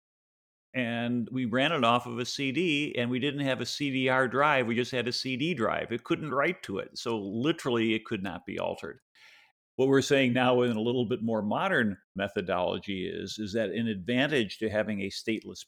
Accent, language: American, English